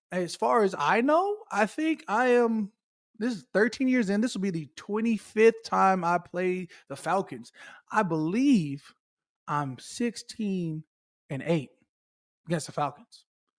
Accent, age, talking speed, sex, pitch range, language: American, 20-39, 150 wpm, male, 155-205 Hz, English